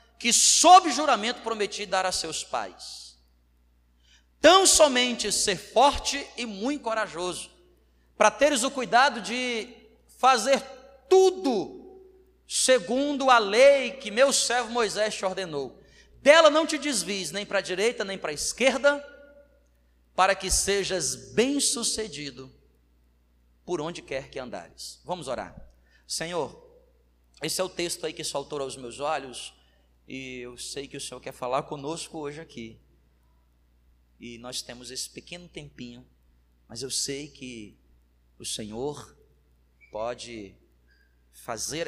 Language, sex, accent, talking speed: Portuguese, male, Brazilian, 130 wpm